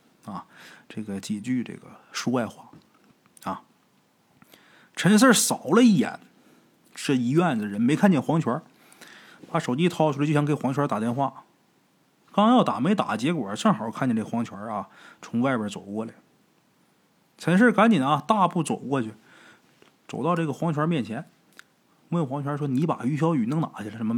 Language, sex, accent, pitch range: Chinese, male, native, 115-180 Hz